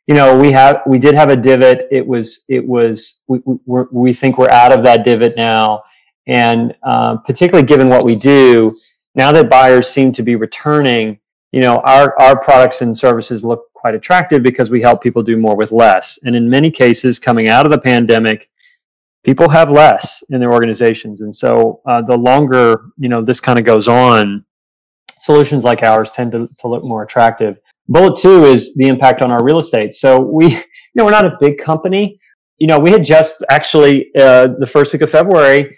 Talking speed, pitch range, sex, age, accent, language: 205 wpm, 120-145 Hz, male, 30-49, American, English